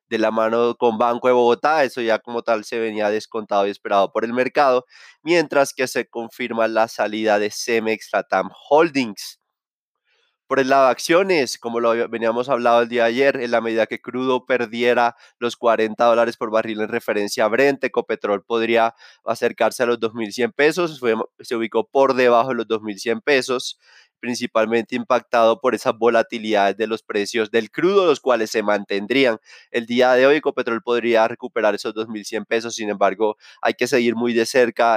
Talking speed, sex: 180 wpm, male